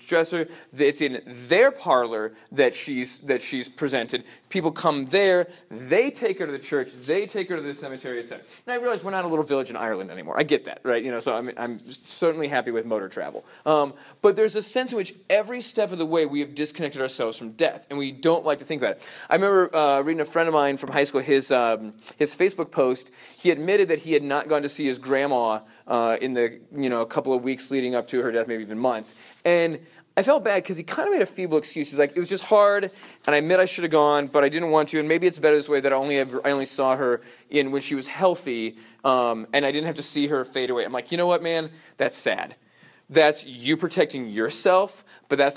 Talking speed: 255 wpm